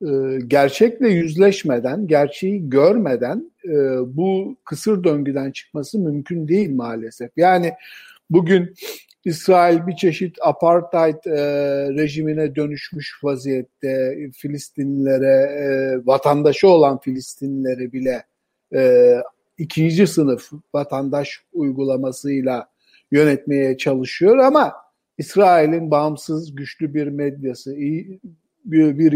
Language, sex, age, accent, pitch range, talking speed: Turkish, male, 50-69, native, 140-180 Hz, 80 wpm